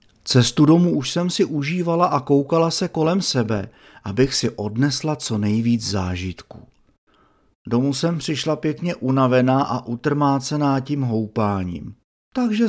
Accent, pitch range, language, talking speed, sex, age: native, 120-170 Hz, Czech, 130 wpm, male, 40-59